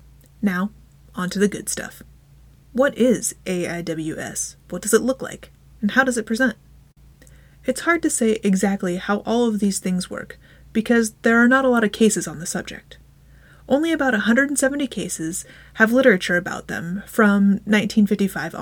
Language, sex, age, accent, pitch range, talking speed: English, female, 30-49, American, 185-235 Hz, 165 wpm